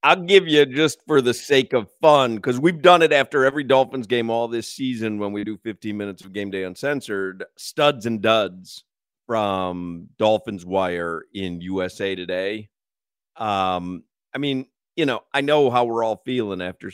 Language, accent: English, American